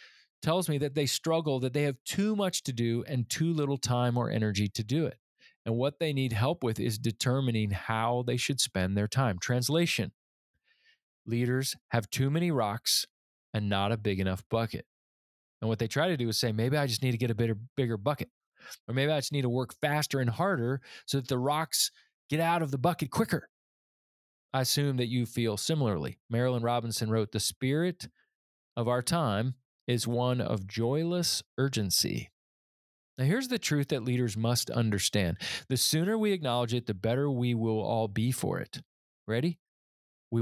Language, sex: English, male